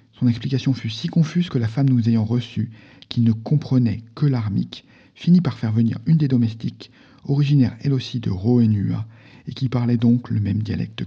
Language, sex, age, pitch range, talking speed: French, male, 50-69, 110-130 Hz, 190 wpm